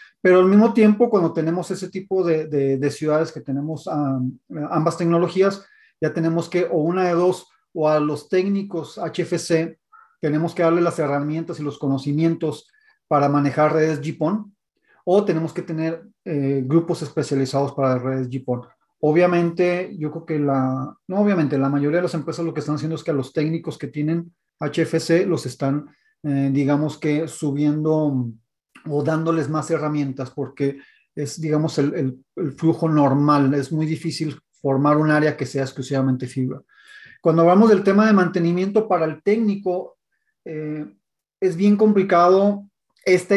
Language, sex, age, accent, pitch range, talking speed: Spanish, male, 40-59, Mexican, 145-175 Hz, 160 wpm